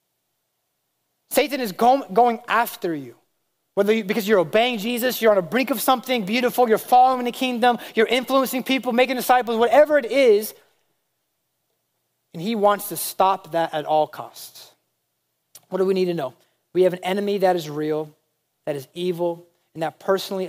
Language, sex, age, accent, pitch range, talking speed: English, male, 30-49, American, 160-235 Hz, 170 wpm